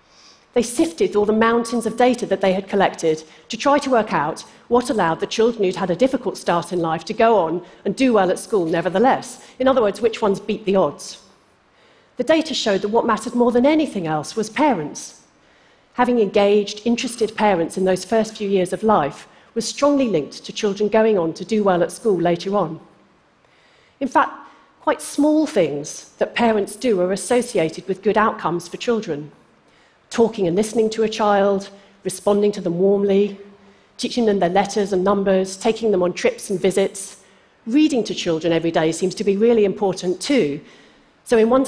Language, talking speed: Russian, 190 wpm